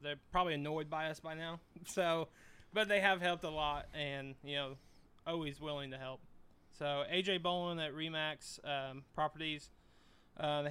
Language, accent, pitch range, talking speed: English, American, 140-160 Hz, 170 wpm